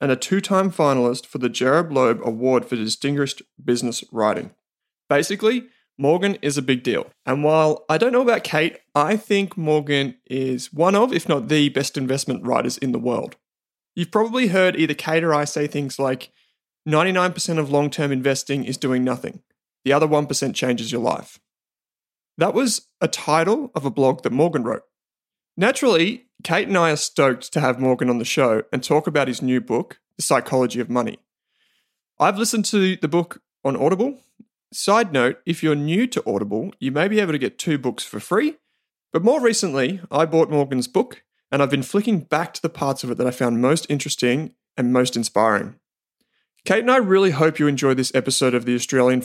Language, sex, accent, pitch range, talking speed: English, male, Australian, 130-180 Hz, 190 wpm